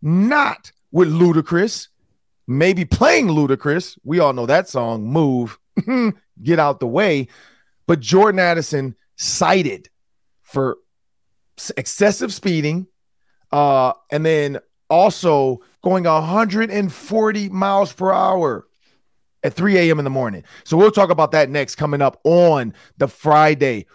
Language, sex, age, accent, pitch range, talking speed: English, male, 40-59, American, 135-170 Hz, 125 wpm